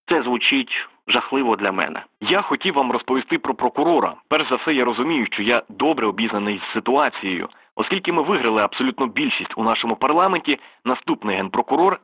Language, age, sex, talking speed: Ukrainian, 20-39, male, 160 wpm